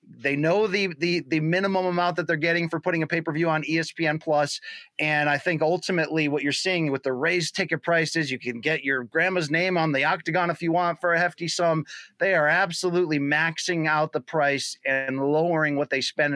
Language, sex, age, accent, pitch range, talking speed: English, male, 30-49, American, 135-170 Hz, 210 wpm